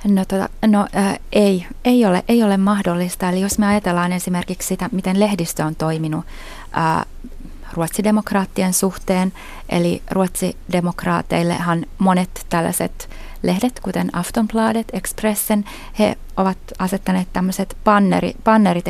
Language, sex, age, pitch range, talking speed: Finnish, female, 30-49, 180-210 Hz, 120 wpm